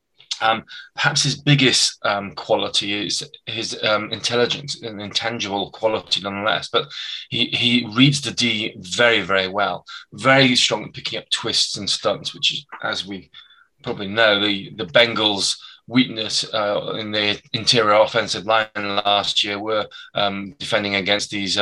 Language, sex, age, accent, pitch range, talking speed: English, male, 20-39, British, 100-120 Hz, 145 wpm